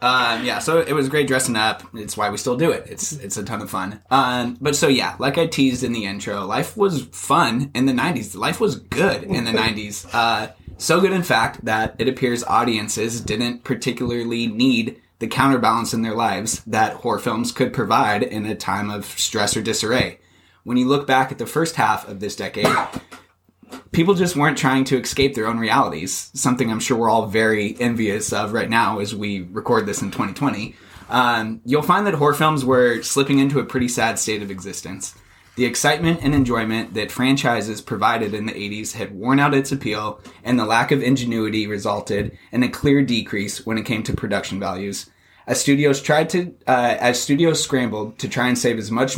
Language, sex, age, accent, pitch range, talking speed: English, male, 20-39, American, 110-135 Hz, 205 wpm